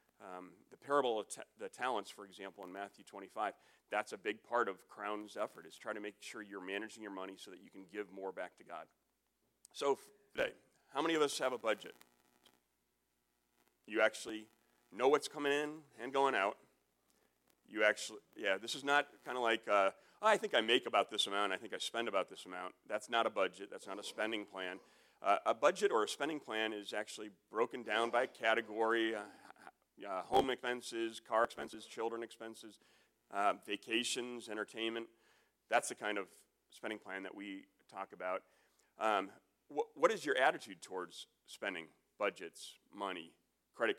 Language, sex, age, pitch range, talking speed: English, male, 40-59, 105-120 Hz, 185 wpm